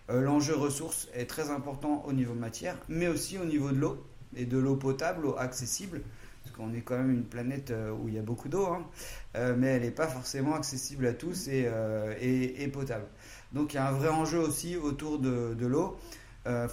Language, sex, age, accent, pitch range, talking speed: French, male, 30-49, French, 120-145 Hz, 220 wpm